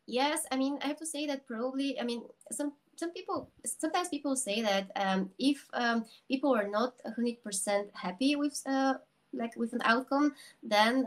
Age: 20-39